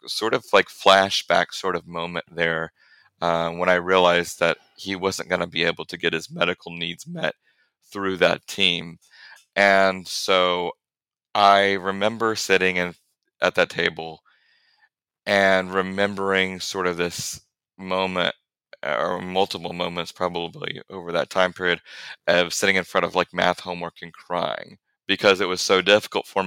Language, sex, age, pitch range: English, male, 30-49, 90-100 Hz